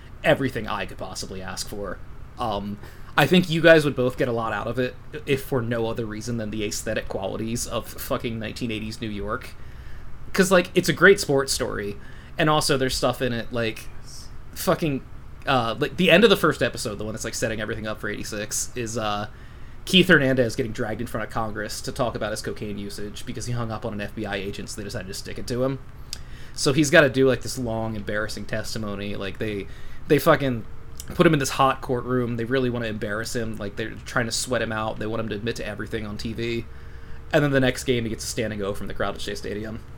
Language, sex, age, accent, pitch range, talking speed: English, male, 20-39, American, 105-135 Hz, 230 wpm